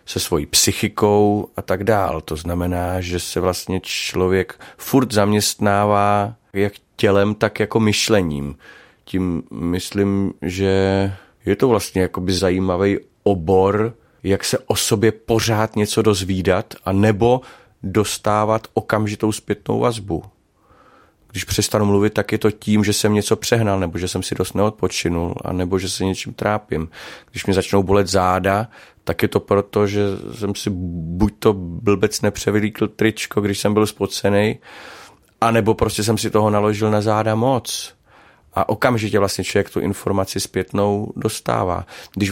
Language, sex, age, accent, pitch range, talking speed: Czech, male, 30-49, native, 95-110 Hz, 145 wpm